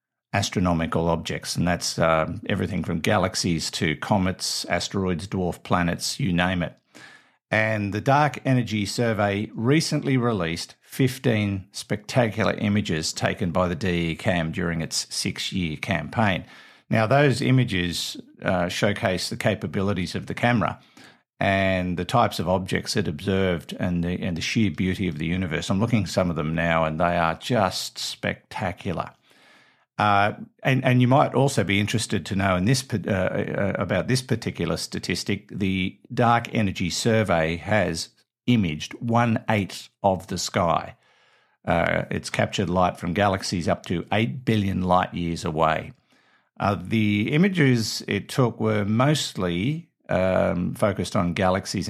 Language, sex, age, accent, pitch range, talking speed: English, male, 50-69, Australian, 90-115 Hz, 140 wpm